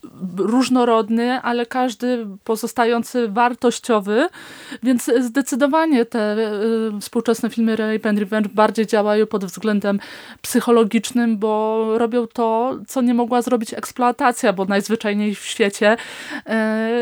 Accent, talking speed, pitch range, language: native, 115 wpm, 215-245 Hz, Polish